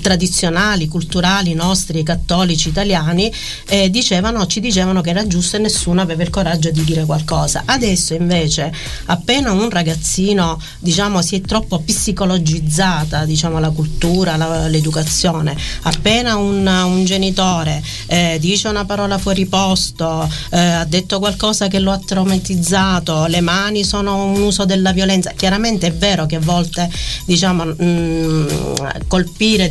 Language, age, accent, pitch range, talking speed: Italian, 40-59, native, 160-190 Hz, 140 wpm